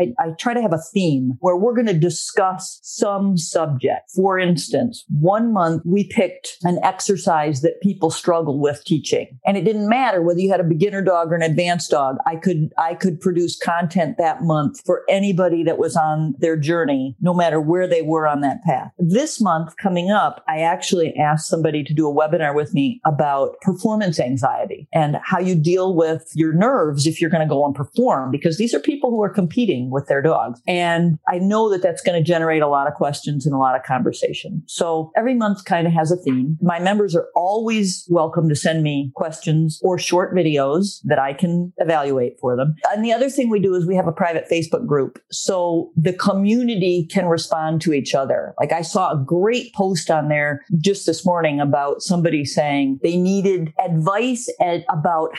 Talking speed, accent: 200 wpm, American